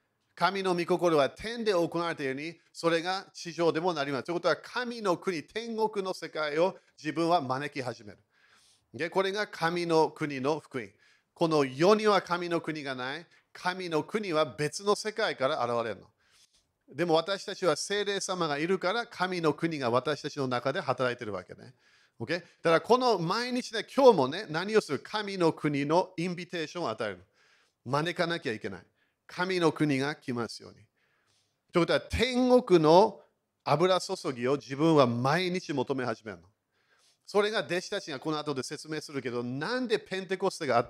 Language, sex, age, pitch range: Japanese, male, 40-59, 145-190 Hz